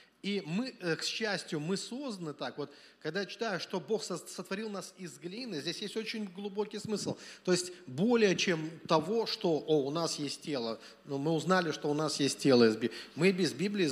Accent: native